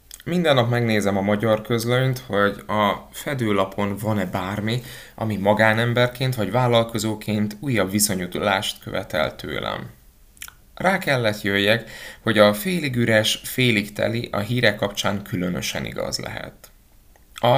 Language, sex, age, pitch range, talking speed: Hungarian, male, 20-39, 95-120 Hz, 120 wpm